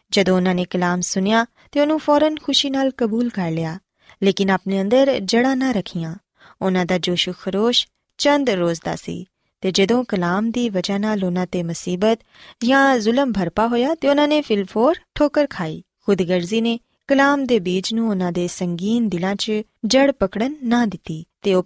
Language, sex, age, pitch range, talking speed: Punjabi, female, 20-39, 185-260 Hz, 120 wpm